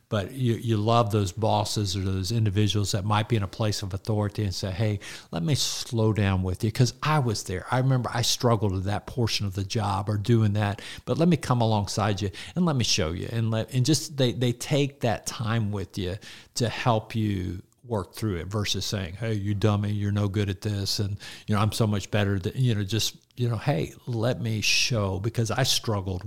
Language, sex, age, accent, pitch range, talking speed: English, male, 50-69, American, 100-115 Hz, 230 wpm